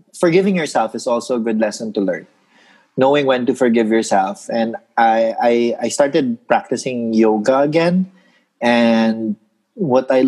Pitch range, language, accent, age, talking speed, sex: 115-160 Hz, English, Filipino, 30-49, 145 wpm, male